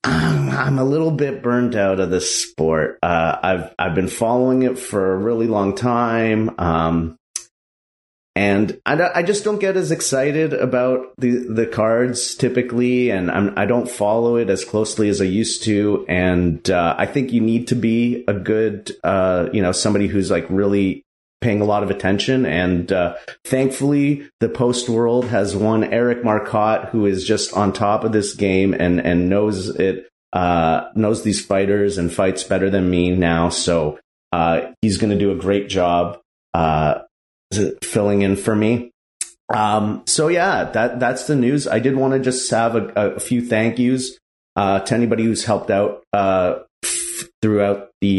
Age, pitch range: 30-49, 95-120 Hz